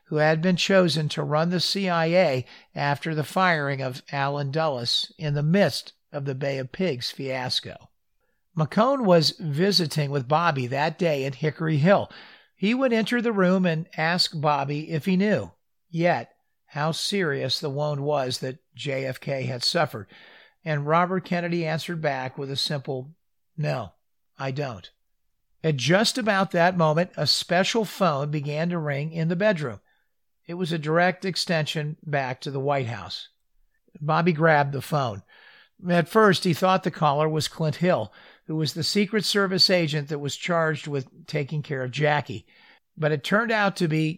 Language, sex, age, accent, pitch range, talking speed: English, male, 50-69, American, 145-180 Hz, 165 wpm